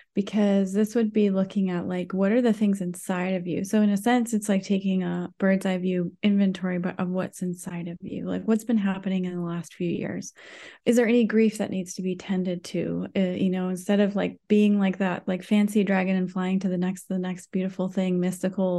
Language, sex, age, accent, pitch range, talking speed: English, female, 20-39, American, 175-200 Hz, 235 wpm